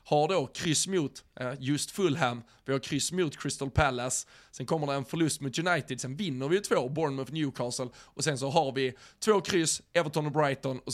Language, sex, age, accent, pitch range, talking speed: Swedish, male, 20-39, native, 130-160 Hz, 195 wpm